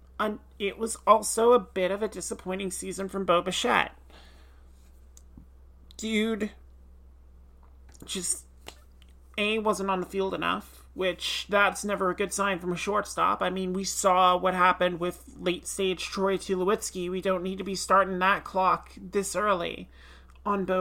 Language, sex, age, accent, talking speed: English, male, 30-49, American, 145 wpm